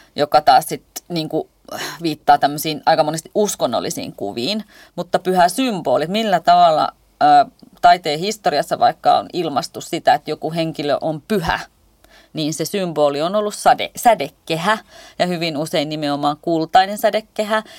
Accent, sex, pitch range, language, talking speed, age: native, female, 155-245 Hz, Finnish, 135 wpm, 30-49